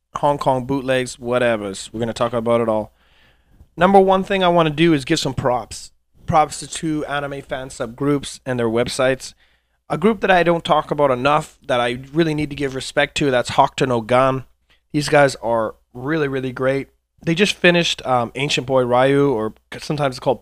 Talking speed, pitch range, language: 195 wpm, 120-145 Hz, English